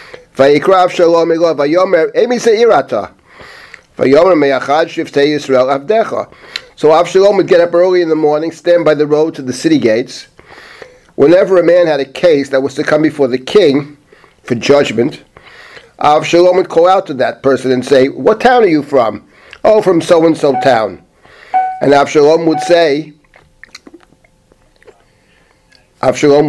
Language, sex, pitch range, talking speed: English, male, 145-200 Hz, 130 wpm